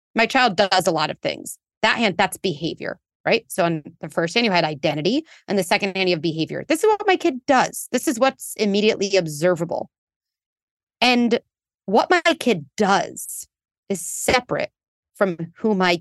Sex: female